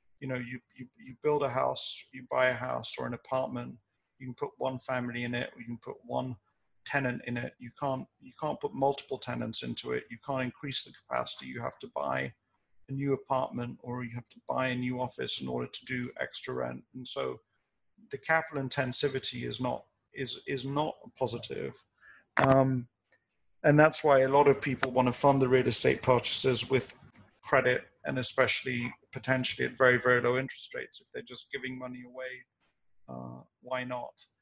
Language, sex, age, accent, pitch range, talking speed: English, male, 40-59, British, 120-135 Hz, 195 wpm